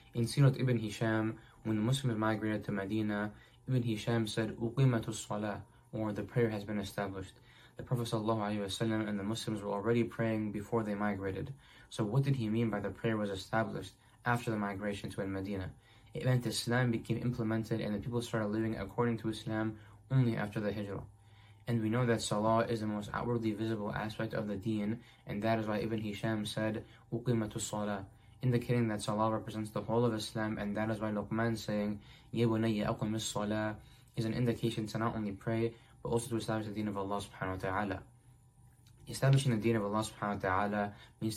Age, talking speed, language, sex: 20-39, 185 wpm, English, male